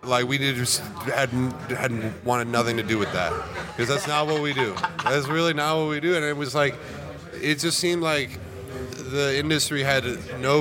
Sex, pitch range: male, 110-135 Hz